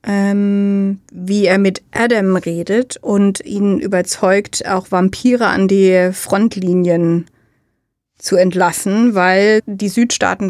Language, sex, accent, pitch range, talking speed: German, female, German, 195-235 Hz, 110 wpm